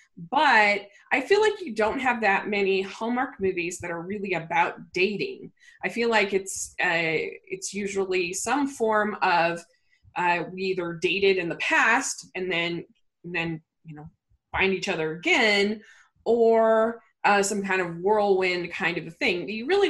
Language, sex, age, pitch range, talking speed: English, female, 20-39, 185-230 Hz, 170 wpm